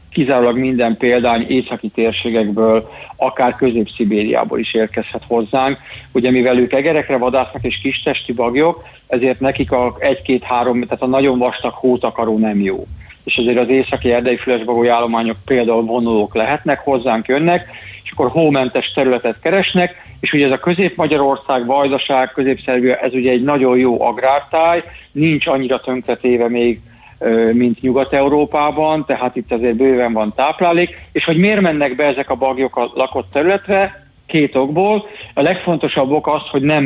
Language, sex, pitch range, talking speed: Hungarian, male, 120-140 Hz, 145 wpm